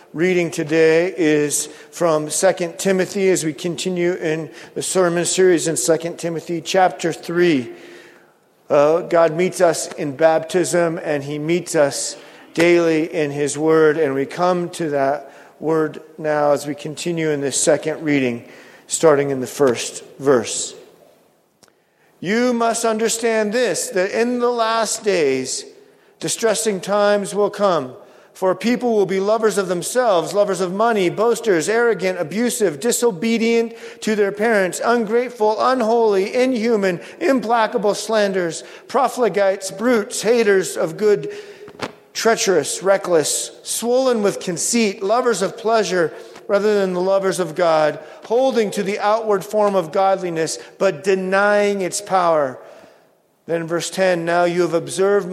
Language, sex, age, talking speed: English, male, 50-69, 135 wpm